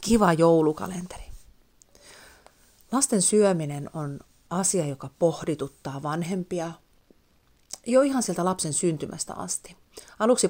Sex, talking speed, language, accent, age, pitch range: female, 90 wpm, Finnish, native, 30-49, 150-185 Hz